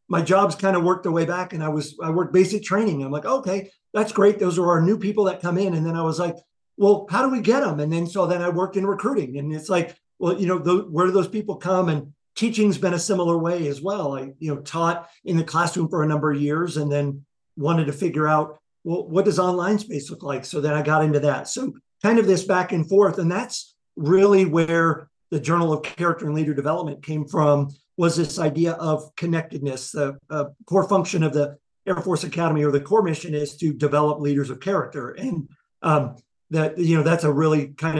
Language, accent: English, American